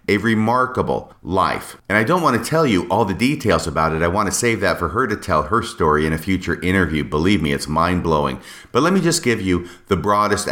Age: 40-59